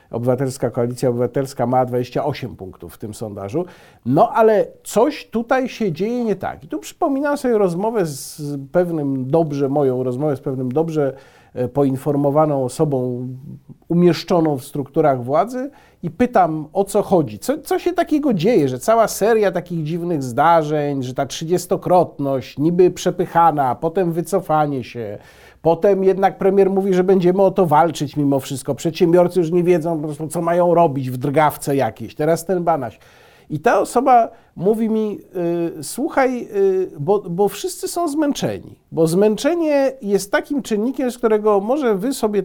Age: 50-69